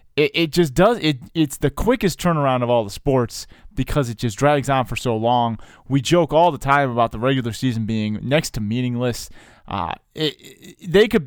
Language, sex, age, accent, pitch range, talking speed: English, male, 20-39, American, 115-140 Hz, 195 wpm